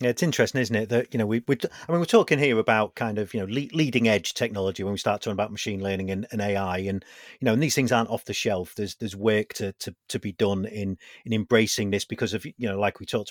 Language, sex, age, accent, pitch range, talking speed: English, male, 40-59, British, 100-120 Hz, 285 wpm